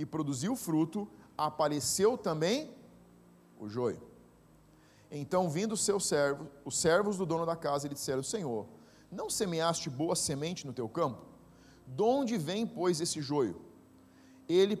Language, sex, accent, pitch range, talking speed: Portuguese, male, Brazilian, 145-205 Hz, 140 wpm